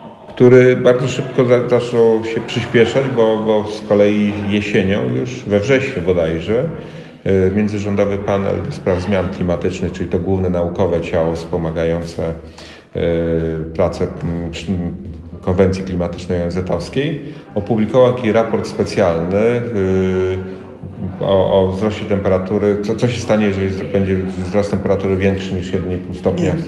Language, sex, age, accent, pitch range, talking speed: Polish, male, 40-59, native, 95-115 Hz, 115 wpm